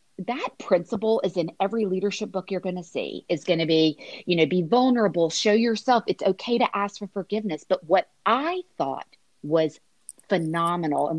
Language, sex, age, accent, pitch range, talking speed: English, female, 40-59, American, 165-215 Hz, 180 wpm